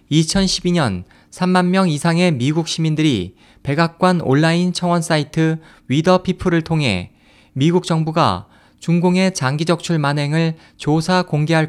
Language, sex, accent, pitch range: Korean, male, native, 140-175 Hz